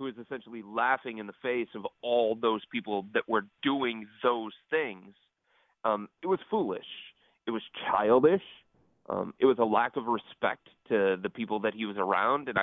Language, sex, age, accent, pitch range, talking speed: English, male, 30-49, American, 110-130 Hz, 180 wpm